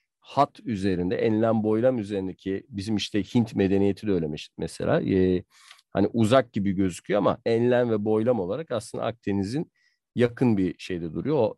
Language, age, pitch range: Turkish, 50-69, 100-130 Hz